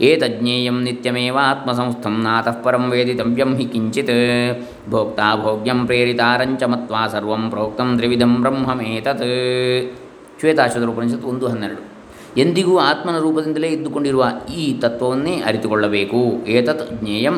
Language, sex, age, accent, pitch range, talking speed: Kannada, male, 20-39, native, 115-140 Hz, 85 wpm